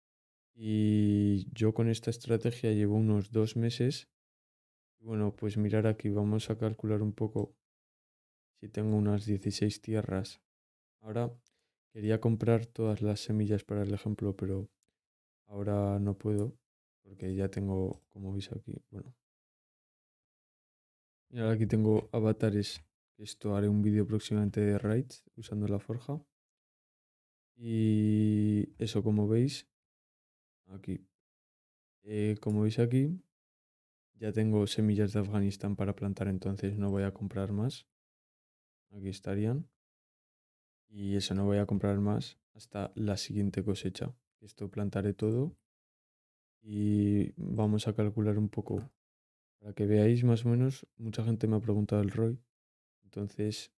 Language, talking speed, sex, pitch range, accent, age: English, 130 wpm, male, 100-110 Hz, Spanish, 20-39